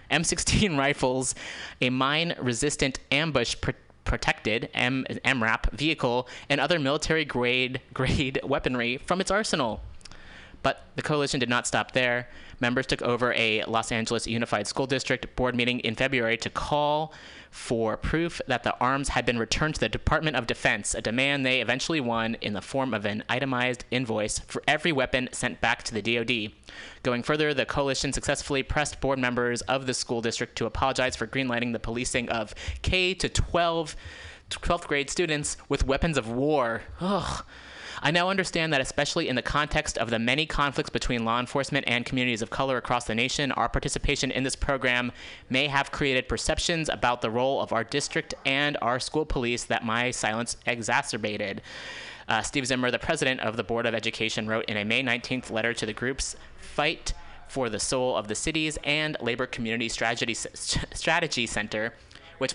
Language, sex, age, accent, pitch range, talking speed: English, male, 20-39, American, 115-140 Hz, 170 wpm